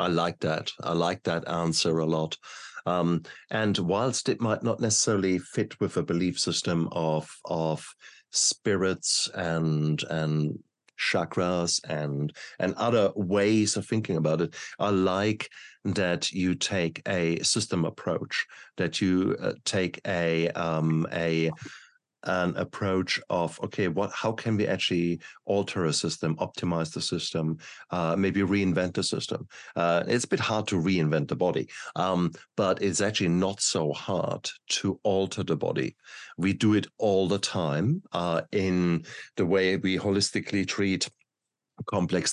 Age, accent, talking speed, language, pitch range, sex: 50-69, German, 145 wpm, English, 80-100 Hz, male